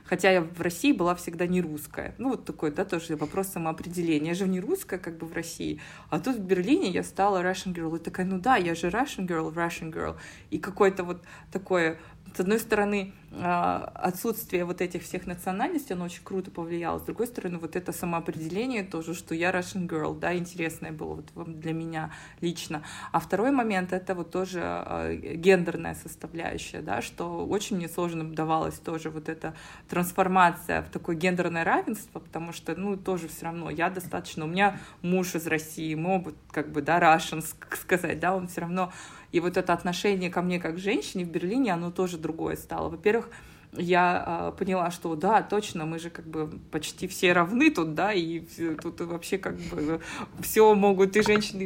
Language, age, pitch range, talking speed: Russian, 20-39, 165-190 Hz, 185 wpm